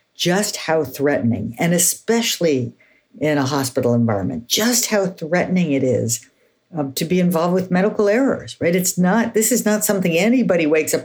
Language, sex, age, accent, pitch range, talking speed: English, female, 50-69, American, 130-175 Hz, 170 wpm